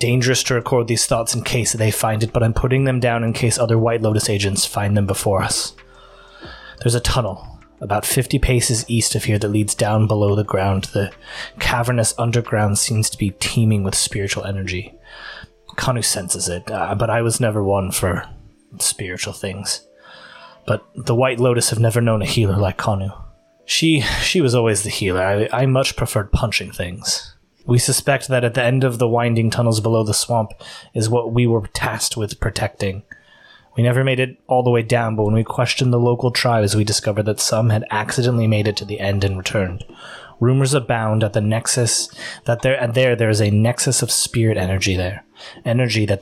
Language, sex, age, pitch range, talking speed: English, male, 20-39, 105-120 Hz, 195 wpm